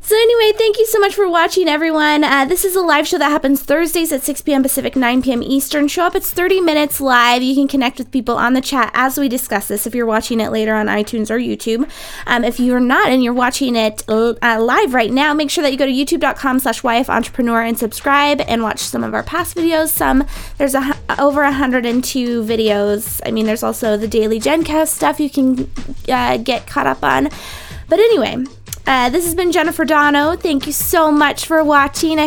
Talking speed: 220 wpm